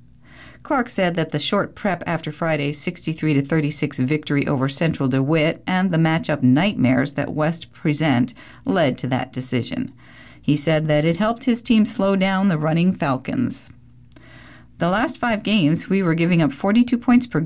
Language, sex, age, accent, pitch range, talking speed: English, female, 40-59, American, 135-180 Hz, 160 wpm